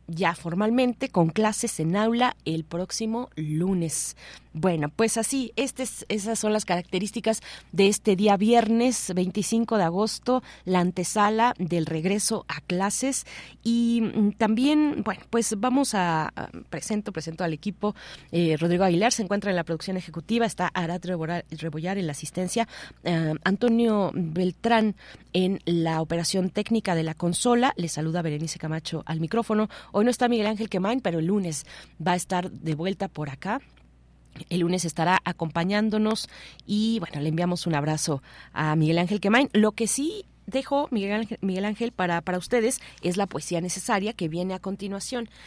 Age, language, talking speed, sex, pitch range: 30-49, Spanish, 160 wpm, female, 170-220 Hz